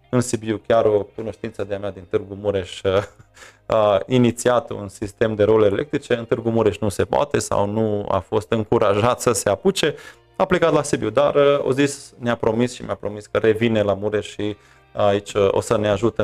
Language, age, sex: Romanian, 20-39, male